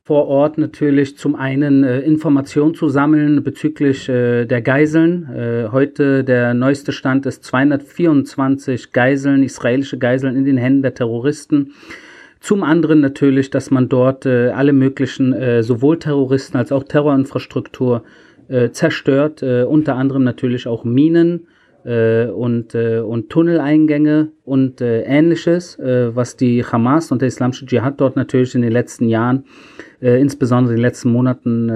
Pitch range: 120-140 Hz